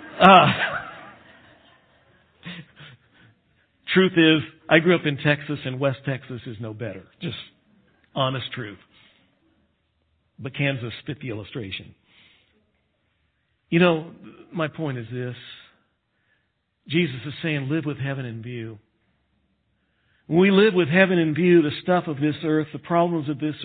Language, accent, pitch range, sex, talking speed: English, American, 115-165 Hz, male, 130 wpm